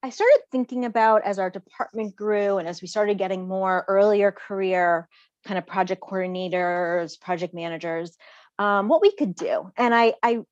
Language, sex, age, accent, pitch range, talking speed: English, female, 30-49, American, 190-240 Hz, 170 wpm